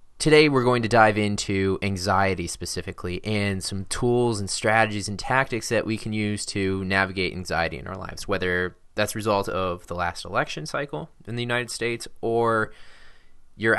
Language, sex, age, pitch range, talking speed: English, male, 20-39, 90-115 Hz, 175 wpm